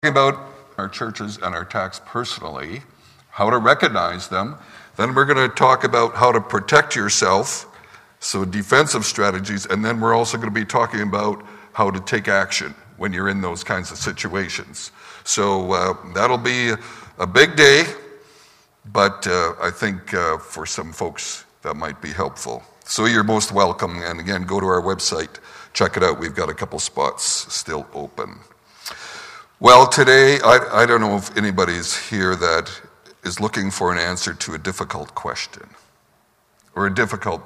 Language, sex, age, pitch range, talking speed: English, male, 60-79, 100-120 Hz, 170 wpm